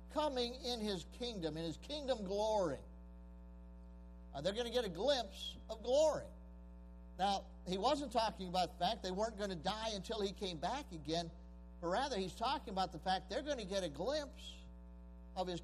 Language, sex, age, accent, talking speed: English, male, 50-69, American, 185 wpm